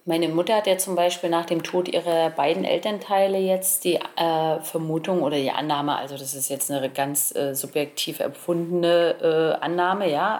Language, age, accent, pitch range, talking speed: German, 30-49, German, 155-175 Hz, 180 wpm